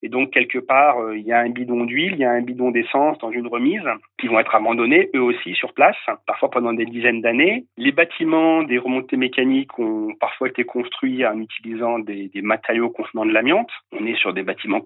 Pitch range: 115-130 Hz